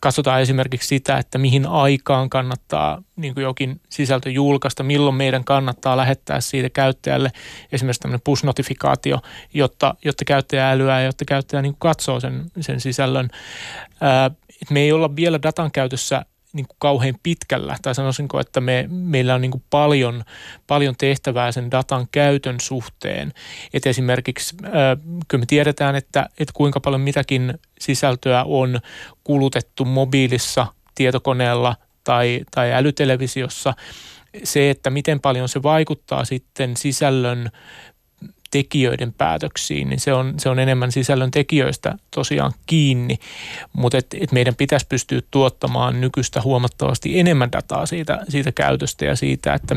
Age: 30-49